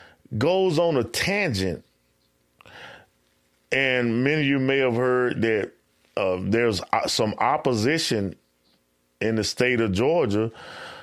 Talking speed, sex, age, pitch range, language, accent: 115 wpm, male, 30-49, 100-130 Hz, English, American